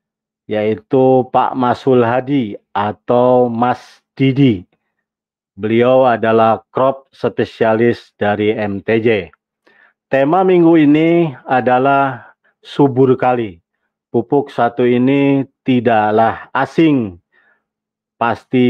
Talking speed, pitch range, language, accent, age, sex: 80 wpm, 115-140 Hz, Indonesian, native, 40-59, male